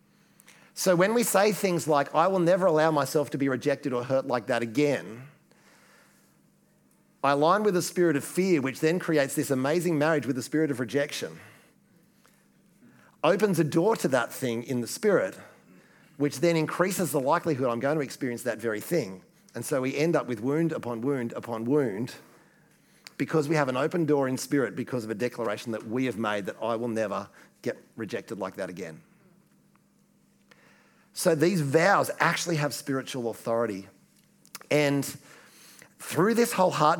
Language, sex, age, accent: English, male, 40-59, Australian